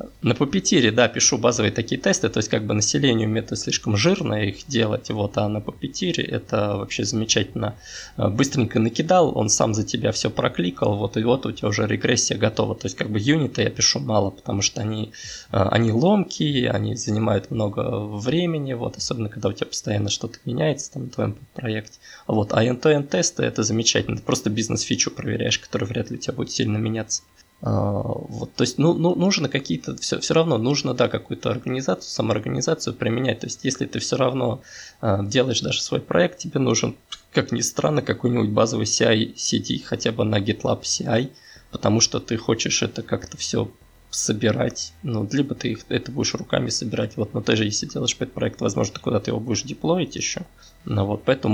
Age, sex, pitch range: 20-39, male, 105-130 Hz